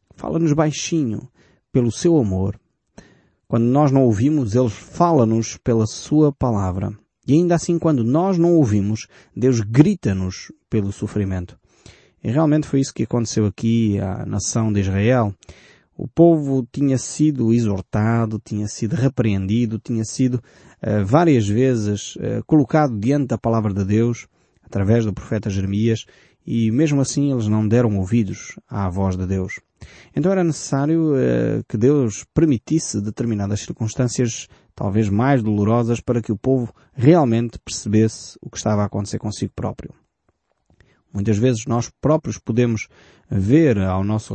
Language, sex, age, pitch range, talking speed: Portuguese, male, 20-39, 105-135 Hz, 140 wpm